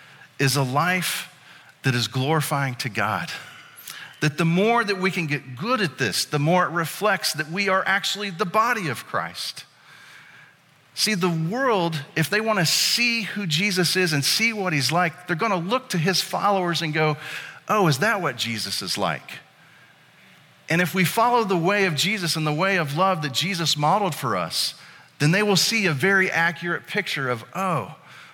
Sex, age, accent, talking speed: male, 40-59, American, 185 wpm